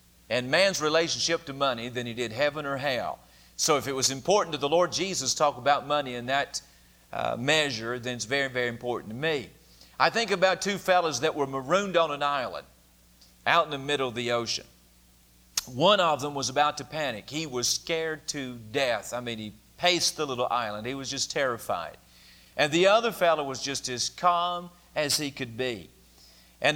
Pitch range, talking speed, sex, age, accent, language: 120-165 Hz, 195 wpm, male, 50-69, American, English